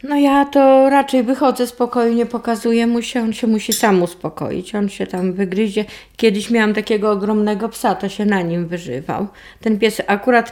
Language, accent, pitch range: Polish, native, 200-235 Hz